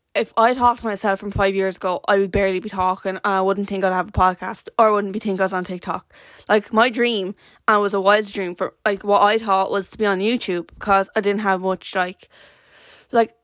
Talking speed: 255 wpm